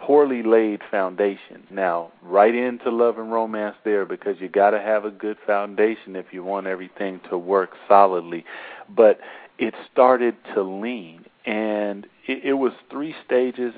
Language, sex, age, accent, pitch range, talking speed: English, male, 40-59, American, 100-125 Hz, 155 wpm